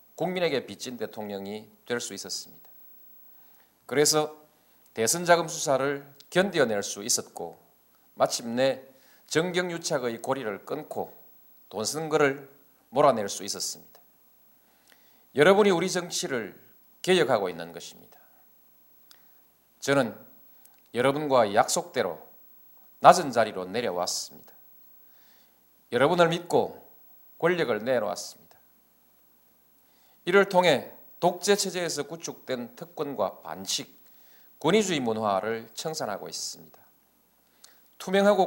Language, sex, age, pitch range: Korean, male, 40-59, 115-175 Hz